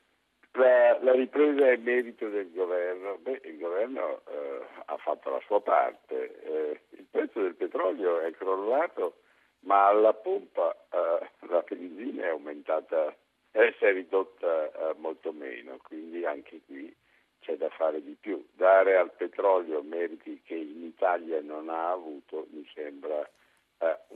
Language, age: Italian, 60-79